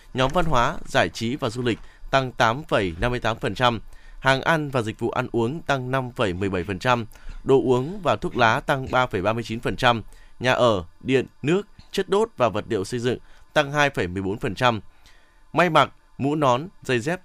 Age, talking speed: 20-39, 155 wpm